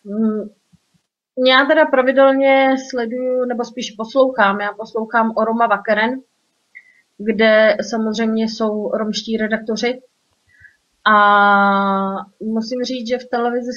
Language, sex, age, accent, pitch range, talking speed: Czech, female, 30-49, native, 215-250 Hz, 100 wpm